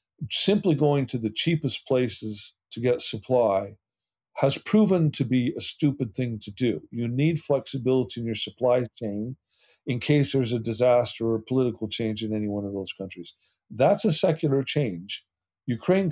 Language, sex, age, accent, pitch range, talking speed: English, male, 50-69, American, 110-145 Hz, 165 wpm